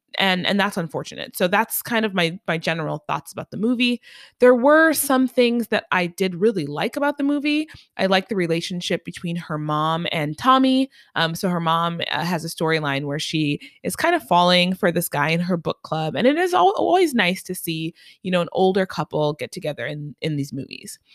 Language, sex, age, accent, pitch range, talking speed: English, female, 20-39, American, 160-225 Hz, 215 wpm